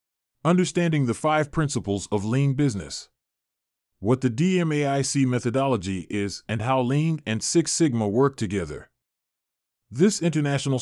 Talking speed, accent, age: 120 wpm, American, 30-49